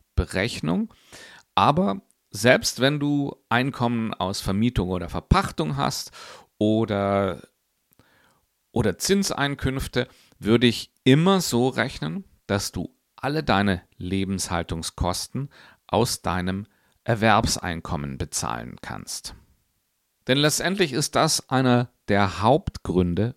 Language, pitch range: German, 95-125 Hz